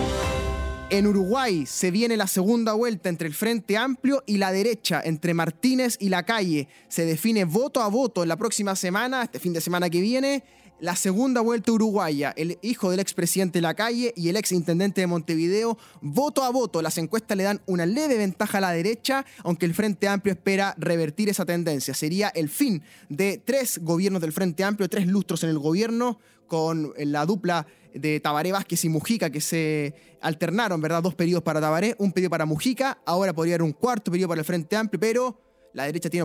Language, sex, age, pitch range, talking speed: Spanish, male, 20-39, 165-215 Hz, 200 wpm